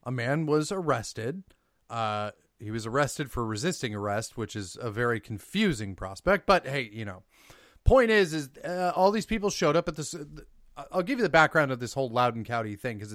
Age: 30-49